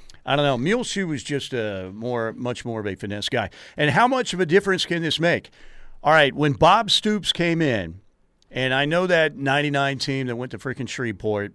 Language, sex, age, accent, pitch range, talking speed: English, male, 50-69, American, 115-150 Hz, 220 wpm